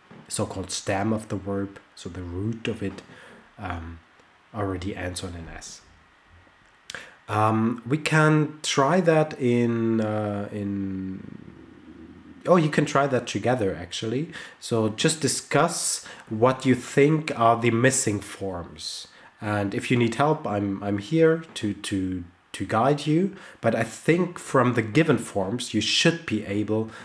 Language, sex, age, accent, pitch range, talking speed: English, male, 30-49, German, 100-140 Hz, 145 wpm